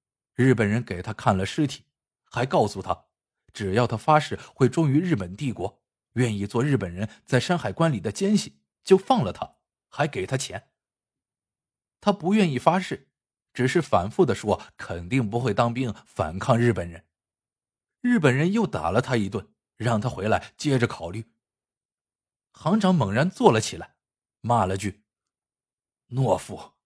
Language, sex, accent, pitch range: Chinese, male, native, 95-140 Hz